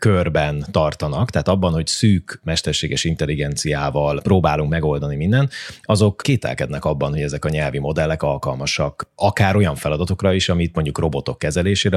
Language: Hungarian